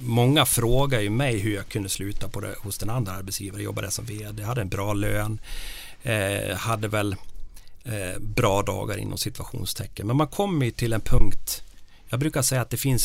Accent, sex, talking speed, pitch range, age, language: Swedish, male, 195 wpm, 95-120 Hz, 40-59, English